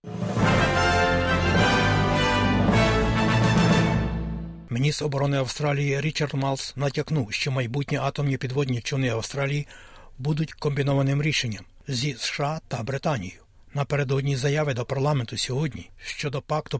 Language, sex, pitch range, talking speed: Ukrainian, male, 125-150 Hz, 95 wpm